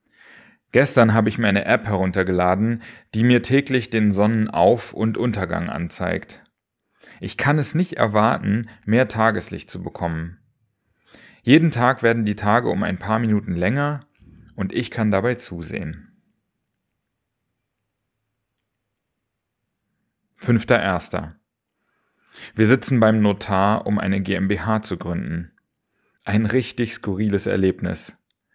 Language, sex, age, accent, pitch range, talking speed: German, male, 40-59, German, 100-120 Hz, 110 wpm